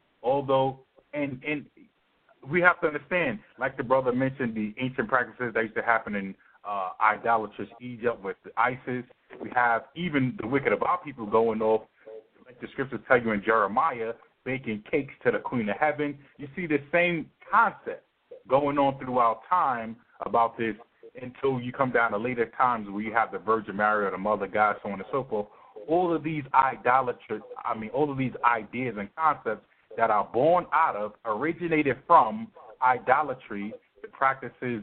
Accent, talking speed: American, 180 wpm